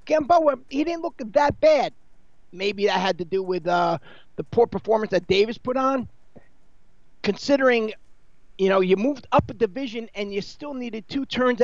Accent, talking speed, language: American, 175 wpm, English